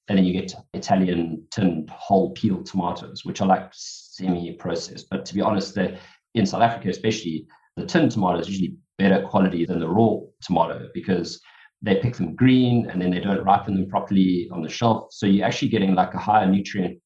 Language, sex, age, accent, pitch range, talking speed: English, male, 30-49, Australian, 95-115 Hz, 195 wpm